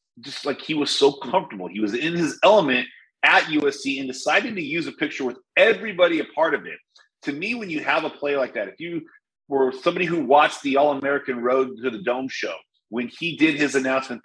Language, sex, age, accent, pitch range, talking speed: English, male, 30-49, American, 125-180 Hz, 220 wpm